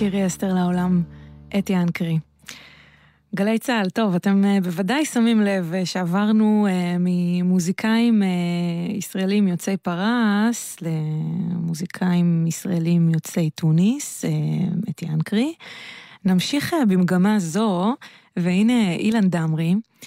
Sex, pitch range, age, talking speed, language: female, 165-200 Hz, 20-39, 85 wpm, Hebrew